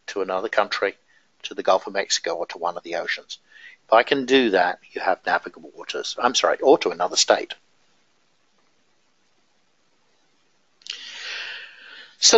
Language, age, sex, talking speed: English, 60-79, male, 145 wpm